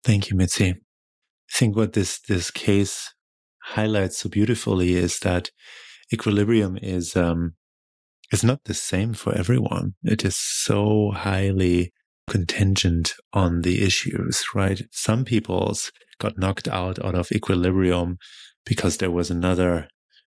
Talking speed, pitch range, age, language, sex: 130 wpm, 90-105 Hz, 30-49, English, male